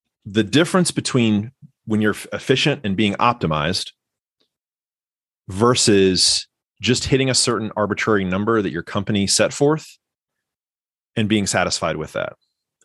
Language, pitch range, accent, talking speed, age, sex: English, 95-135 Hz, American, 125 wpm, 30-49, male